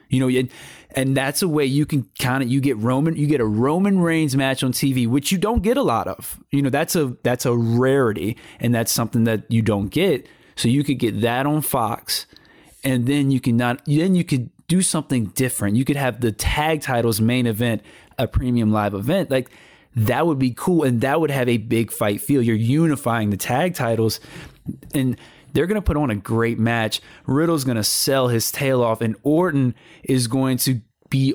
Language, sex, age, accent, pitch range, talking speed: English, male, 20-39, American, 115-145 Hz, 215 wpm